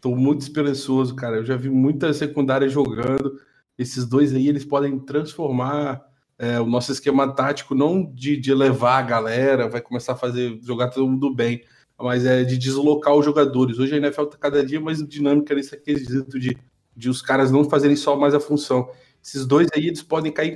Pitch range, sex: 130-145 Hz, male